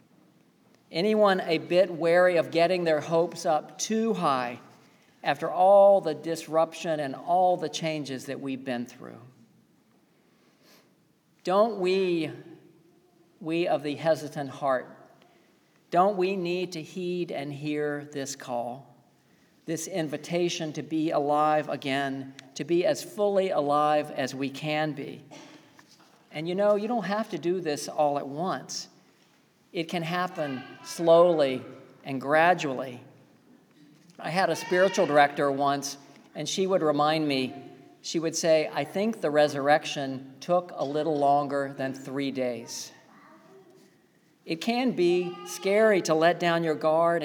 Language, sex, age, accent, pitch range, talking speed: English, male, 50-69, American, 145-175 Hz, 135 wpm